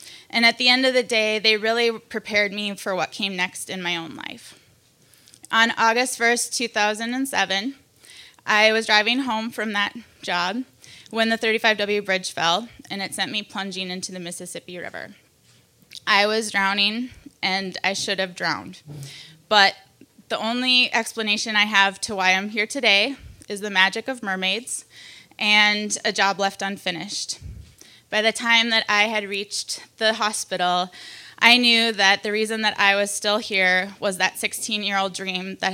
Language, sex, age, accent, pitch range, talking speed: English, female, 20-39, American, 190-220 Hz, 165 wpm